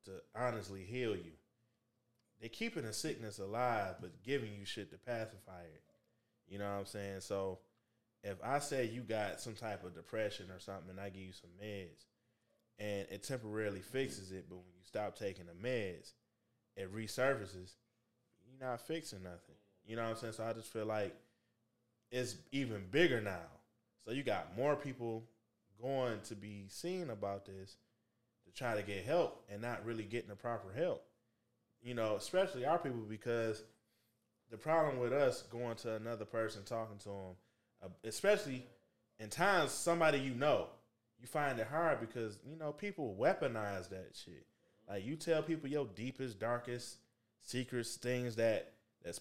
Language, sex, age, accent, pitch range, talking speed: English, male, 20-39, American, 100-125 Hz, 170 wpm